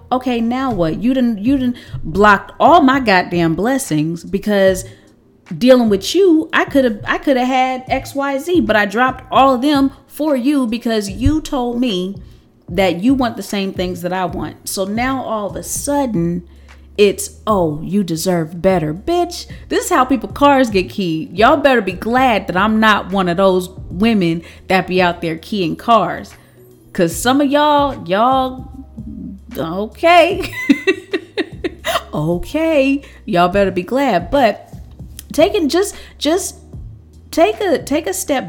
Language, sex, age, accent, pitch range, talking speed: English, female, 30-49, American, 180-265 Hz, 160 wpm